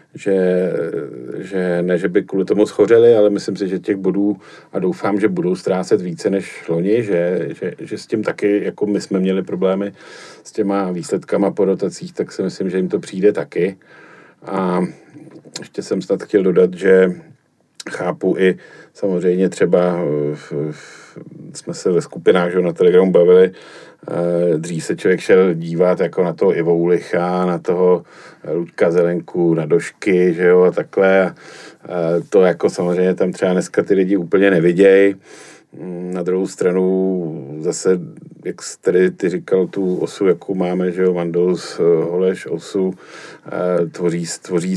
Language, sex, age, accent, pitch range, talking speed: Czech, male, 40-59, native, 90-100 Hz, 155 wpm